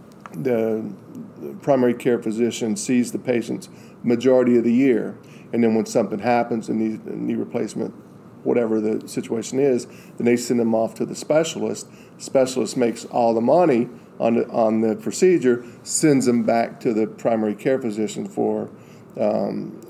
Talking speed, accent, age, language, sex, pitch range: 165 wpm, American, 40-59, English, male, 110-125 Hz